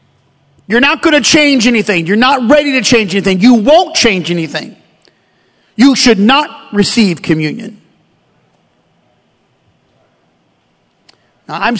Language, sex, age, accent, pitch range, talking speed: English, male, 40-59, American, 195-245 Hz, 115 wpm